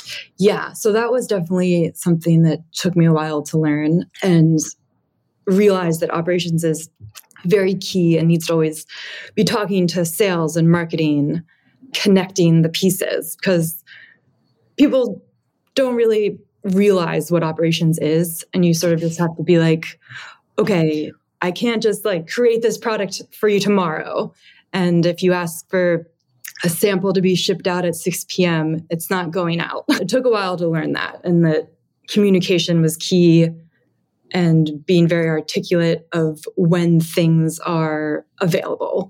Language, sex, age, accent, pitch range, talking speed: English, female, 20-39, American, 165-200 Hz, 155 wpm